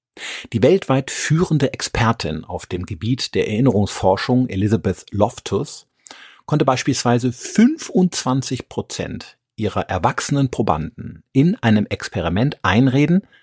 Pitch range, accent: 100-135 Hz, German